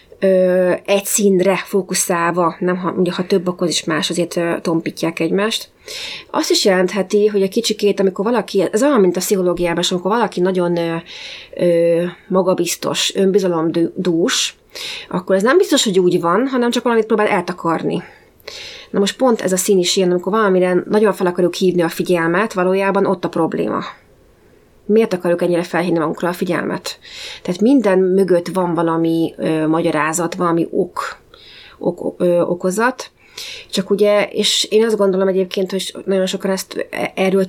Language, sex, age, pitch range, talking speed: Hungarian, female, 30-49, 175-200 Hz, 160 wpm